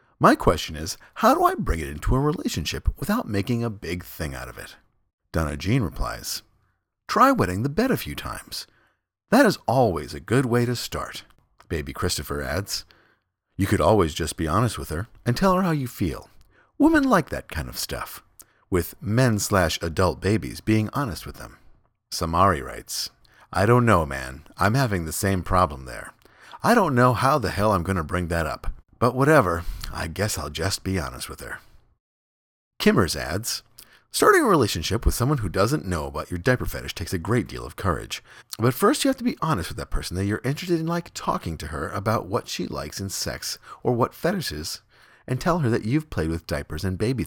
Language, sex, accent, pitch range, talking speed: English, male, American, 80-125 Hz, 205 wpm